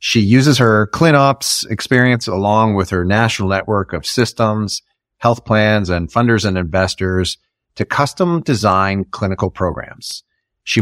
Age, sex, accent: 30-49, male, American